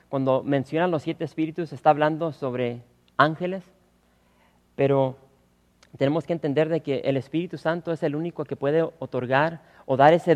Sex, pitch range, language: male, 125-165 Hz, English